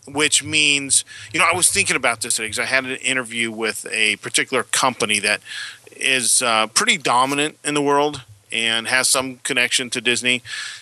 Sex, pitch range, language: male, 115-135 Hz, English